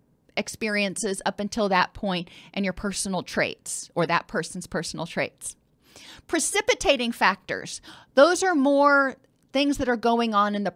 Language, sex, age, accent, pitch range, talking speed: English, female, 40-59, American, 190-245 Hz, 145 wpm